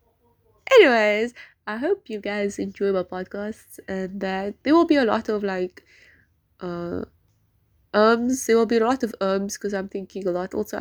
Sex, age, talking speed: female, 20-39, 180 wpm